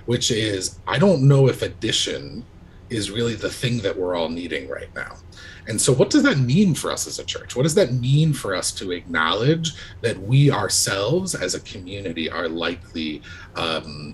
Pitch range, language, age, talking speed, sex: 95-130 Hz, English, 30-49, 190 wpm, male